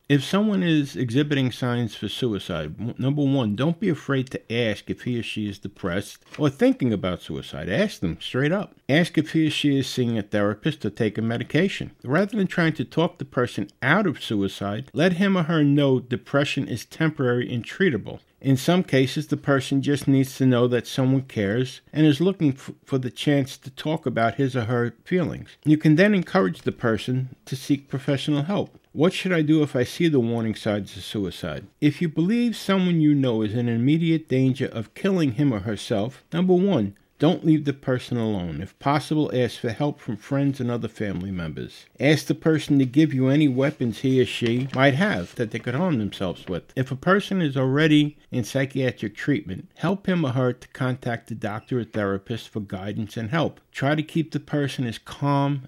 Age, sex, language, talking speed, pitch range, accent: 50-69, male, English, 205 wpm, 115-150 Hz, American